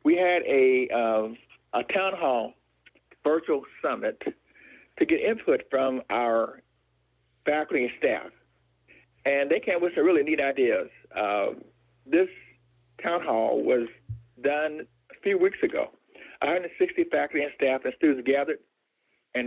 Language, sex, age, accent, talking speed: English, male, 60-79, American, 135 wpm